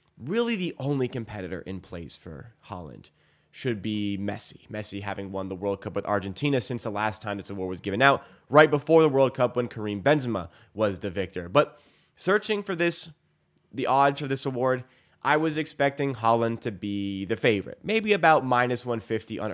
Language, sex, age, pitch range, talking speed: English, male, 20-39, 110-140 Hz, 185 wpm